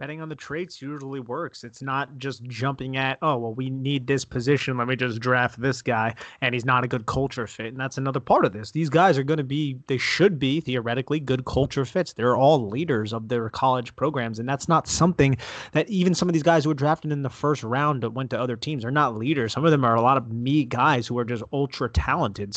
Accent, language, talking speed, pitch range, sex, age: American, English, 250 wpm, 120-145 Hz, male, 30-49